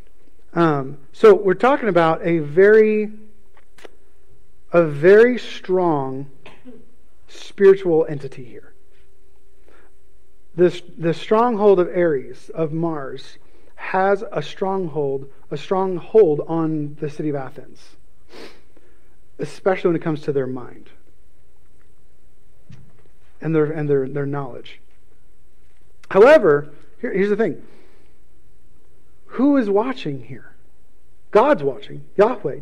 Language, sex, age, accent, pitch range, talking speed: English, male, 40-59, American, 135-195 Hz, 105 wpm